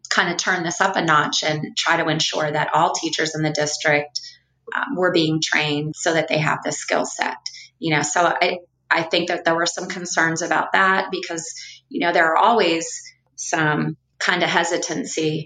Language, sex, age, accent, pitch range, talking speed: English, female, 30-49, American, 150-170 Hz, 200 wpm